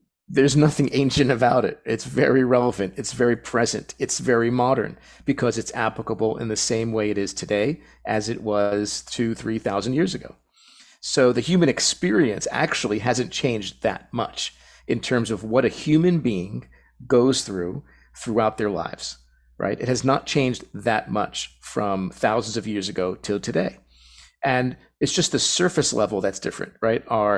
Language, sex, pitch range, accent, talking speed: English, male, 105-130 Hz, American, 165 wpm